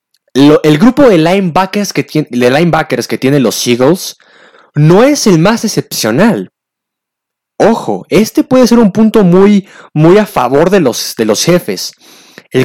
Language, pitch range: Spanish, 125-185 Hz